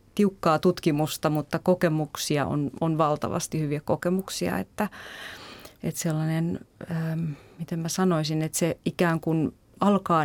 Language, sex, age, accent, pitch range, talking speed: Finnish, female, 30-49, native, 160-185 Hz, 125 wpm